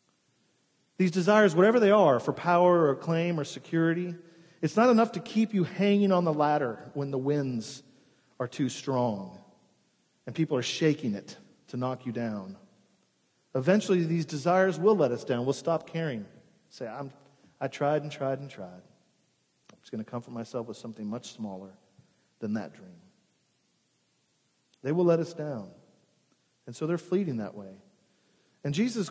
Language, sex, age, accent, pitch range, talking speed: English, male, 40-59, American, 135-195 Hz, 165 wpm